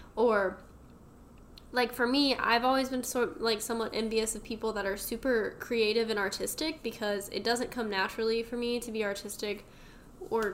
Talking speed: 175 wpm